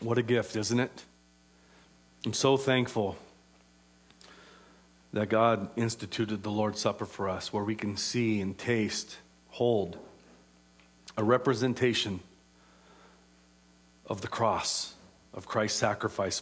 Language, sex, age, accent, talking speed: English, male, 40-59, American, 115 wpm